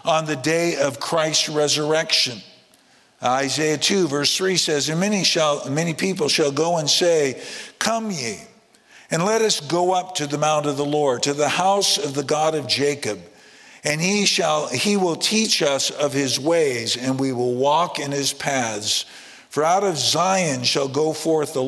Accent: American